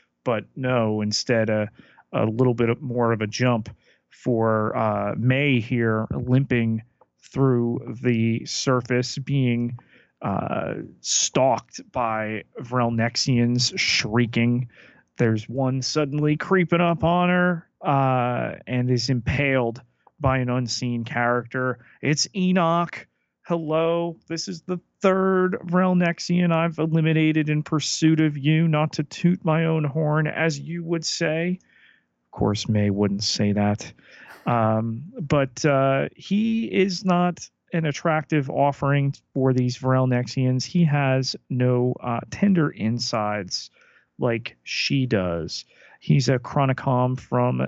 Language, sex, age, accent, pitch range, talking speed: English, male, 30-49, American, 120-160 Hz, 120 wpm